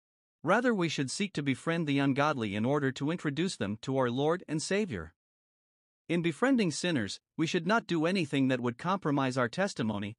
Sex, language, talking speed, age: male, English, 185 wpm, 50-69